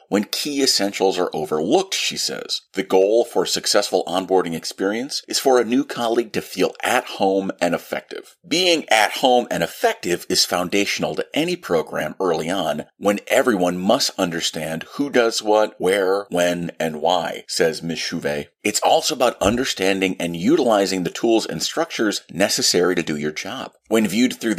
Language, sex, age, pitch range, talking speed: English, male, 40-59, 90-120 Hz, 170 wpm